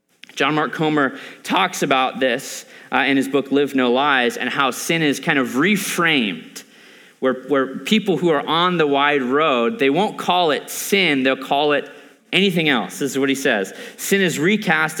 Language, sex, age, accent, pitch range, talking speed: English, male, 30-49, American, 130-180 Hz, 190 wpm